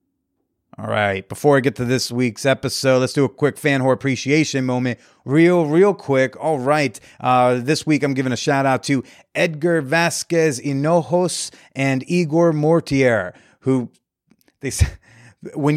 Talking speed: 150 wpm